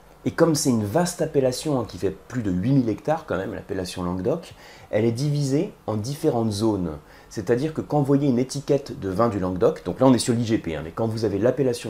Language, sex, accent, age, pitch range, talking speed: French, male, French, 30-49, 105-145 Hz, 225 wpm